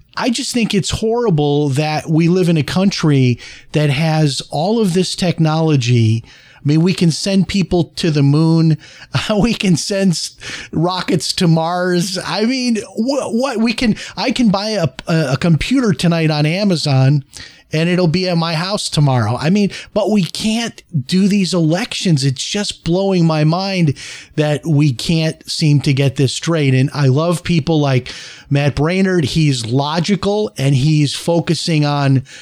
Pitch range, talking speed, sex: 135-175 Hz, 165 wpm, male